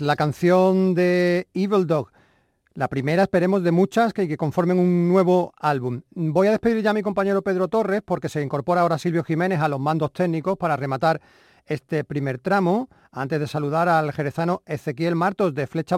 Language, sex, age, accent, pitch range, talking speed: Spanish, male, 40-59, Spanish, 155-195 Hz, 180 wpm